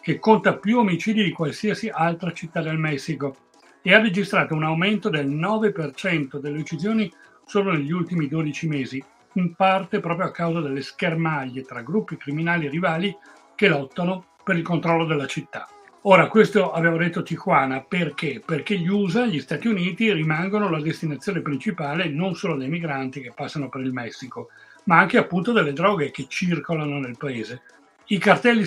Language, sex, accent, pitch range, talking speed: Italian, male, native, 150-190 Hz, 165 wpm